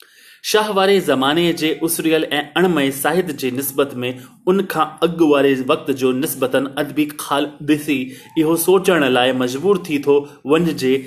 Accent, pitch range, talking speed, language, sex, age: native, 140-175 Hz, 130 wpm, Hindi, male, 30-49